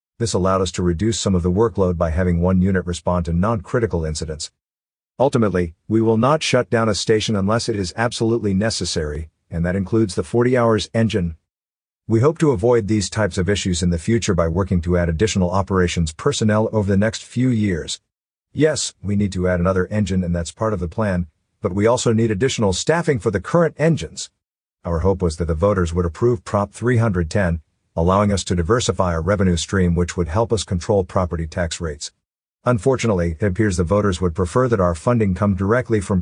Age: 50-69